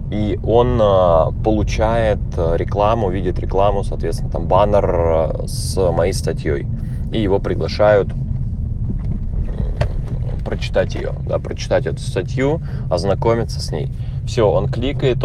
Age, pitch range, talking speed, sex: 20-39, 85-115 Hz, 105 wpm, male